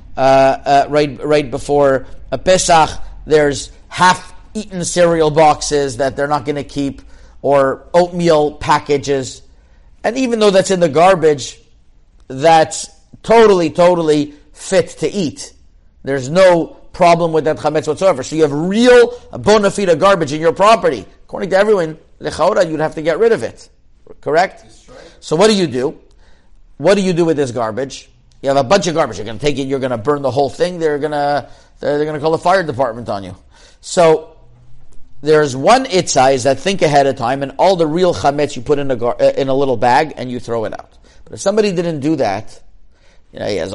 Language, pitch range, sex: English, 130-170 Hz, male